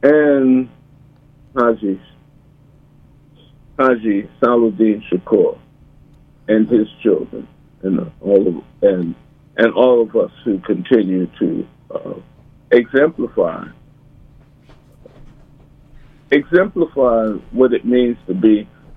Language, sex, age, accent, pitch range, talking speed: English, male, 50-69, American, 115-145 Hz, 90 wpm